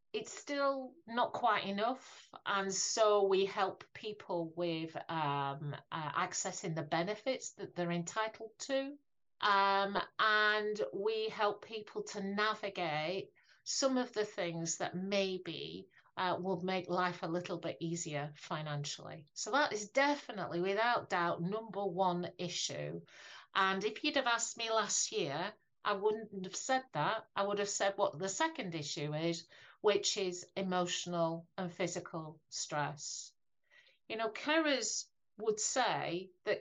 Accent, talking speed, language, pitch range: British, 140 wpm, English, 175-220 Hz